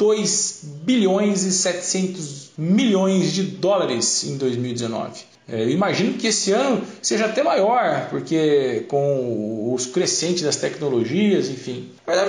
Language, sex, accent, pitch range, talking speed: Portuguese, male, Brazilian, 175-225 Hz, 125 wpm